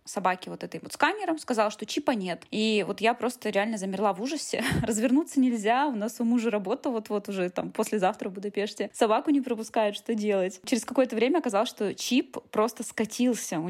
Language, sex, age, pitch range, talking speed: Russian, female, 20-39, 200-245 Hz, 195 wpm